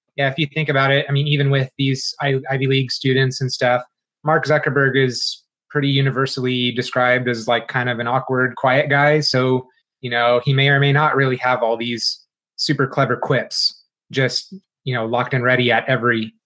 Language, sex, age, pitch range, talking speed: English, male, 30-49, 125-145 Hz, 195 wpm